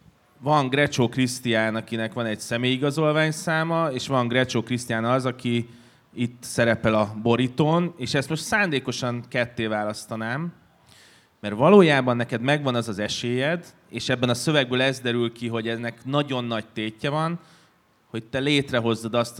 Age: 30-49